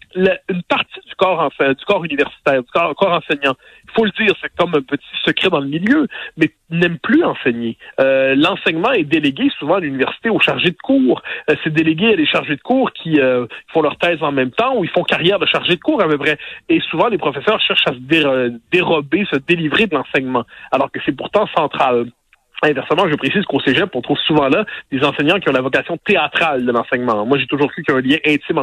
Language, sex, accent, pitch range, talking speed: French, male, French, 140-185 Hz, 235 wpm